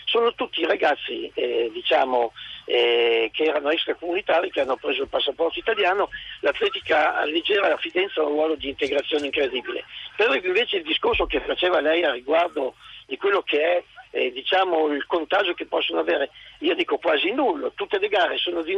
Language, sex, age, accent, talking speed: Italian, male, 50-69, native, 175 wpm